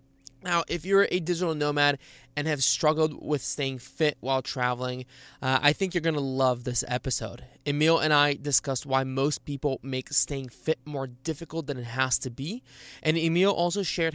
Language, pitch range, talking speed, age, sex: English, 125-150 Hz, 185 wpm, 20-39, male